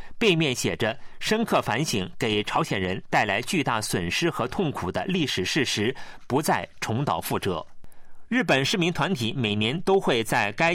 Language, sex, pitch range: Chinese, male, 120-175 Hz